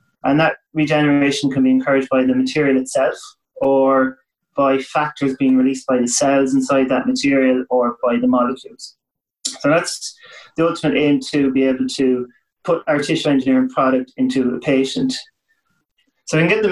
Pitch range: 130-150 Hz